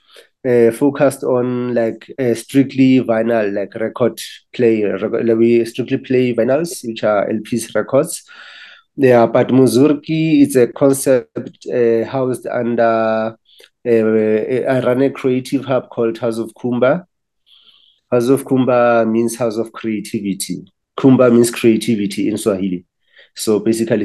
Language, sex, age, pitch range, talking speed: English, male, 30-49, 110-125 Hz, 135 wpm